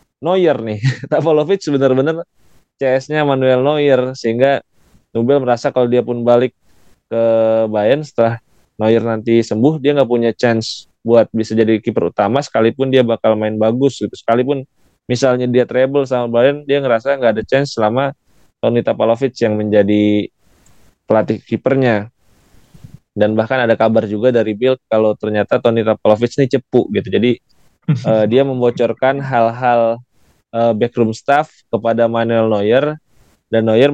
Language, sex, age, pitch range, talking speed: Indonesian, male, 20-39, 110-130 Hz, 140 wpm